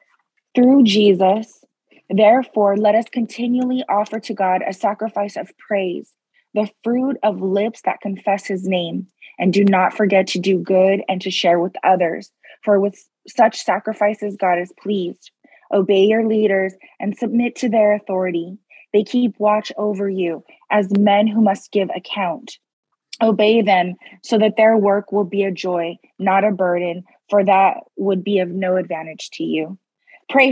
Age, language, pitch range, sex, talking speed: 20-39, English, 190-215 Hz, female, 160 wpm